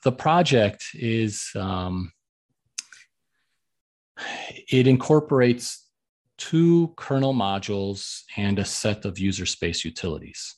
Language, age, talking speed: English, 40-59, 90 wpm